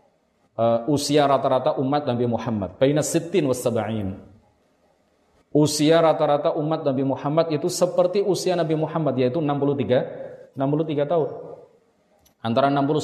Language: Indonesian